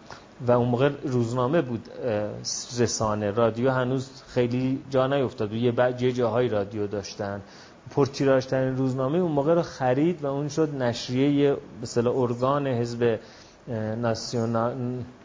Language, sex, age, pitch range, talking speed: Persian, male, 30-49, 120-155 Hz, 120 wpm